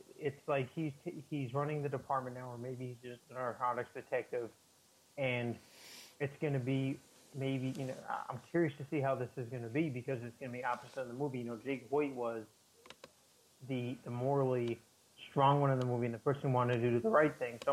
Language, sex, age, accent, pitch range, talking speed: English, male, 30-49, American, 125-145 Hz, 220 wpm